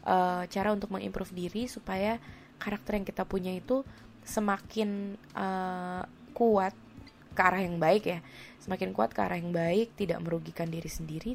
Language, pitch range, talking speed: Indonesian, 175-205 Hz, 150 wpm